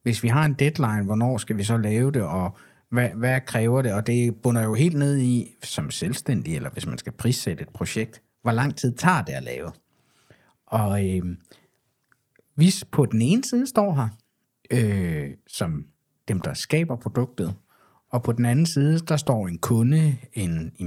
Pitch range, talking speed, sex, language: 105-140 Hz, 180 wpm, male, Danish